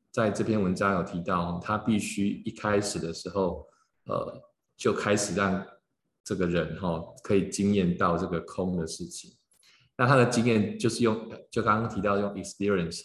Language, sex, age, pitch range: Chinese, male, 20-39, 85-105 Hz